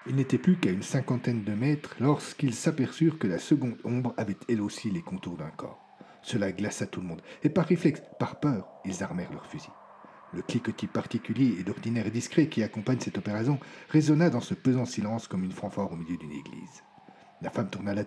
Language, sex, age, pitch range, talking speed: French, male, 40-59, 105-140 Hz, 205 wpm